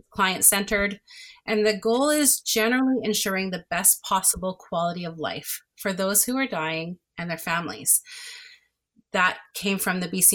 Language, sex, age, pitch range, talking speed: English, female, 30-49, 180-225 Hz, 150 wpm